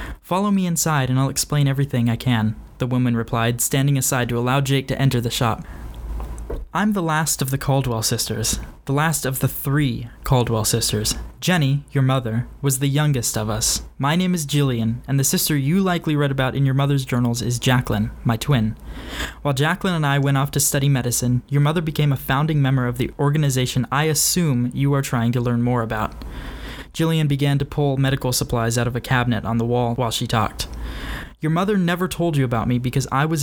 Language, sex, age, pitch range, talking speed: English, male, 20-39, 120-145 Hz, 205 wpm